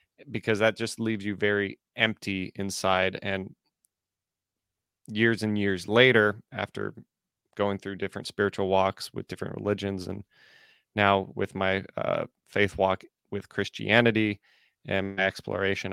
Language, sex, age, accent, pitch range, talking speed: English, male, 30-49, American, 95-105 Hz, 125 wpm